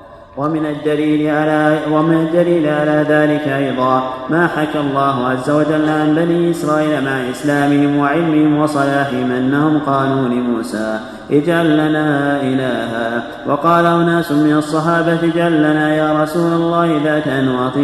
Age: 30-49